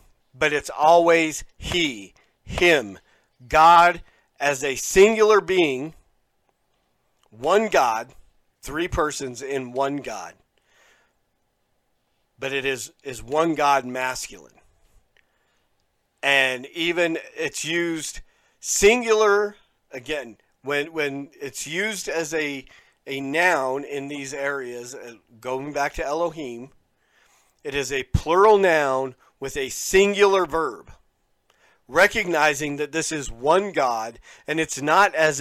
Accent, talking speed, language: American, 110 wpm, English